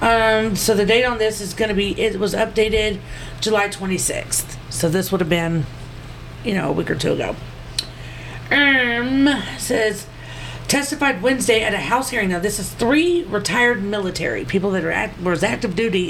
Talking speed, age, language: 180 wpm, 40-59, English